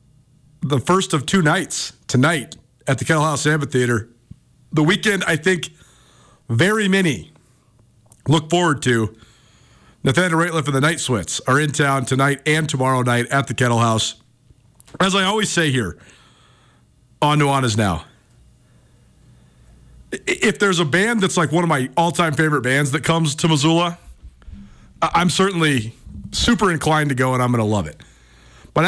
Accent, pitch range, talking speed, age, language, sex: American, 125-175 Hz, 160 wpm, 40-59, English, male